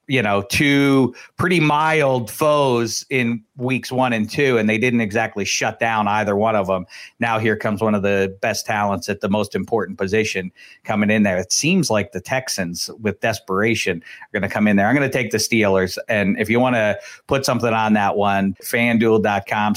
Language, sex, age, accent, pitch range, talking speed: English, male, 40-59, American, 110-145 Hz, 205 wpm